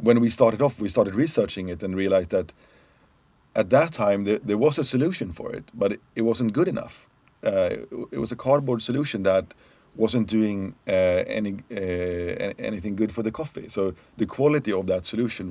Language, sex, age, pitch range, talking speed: English, male, 40-59, 95-115 Hz, 185 wpm